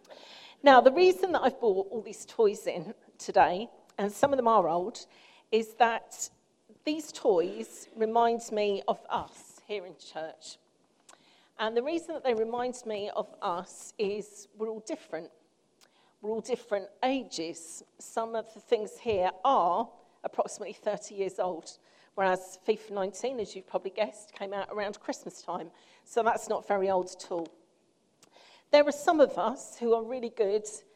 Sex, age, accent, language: female, 40-59, British, English